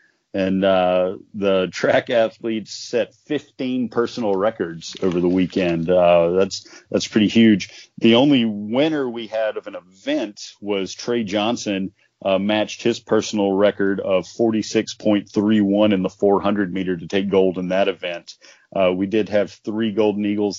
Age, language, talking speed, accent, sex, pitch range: 40-59, English, 150 wpm, American, male, 95-110 Hz